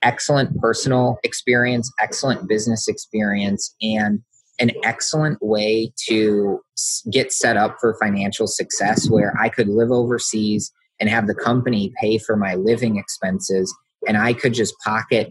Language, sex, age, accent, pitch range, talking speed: English, male, 30-49, American, 105-125 Hz, 140 wpm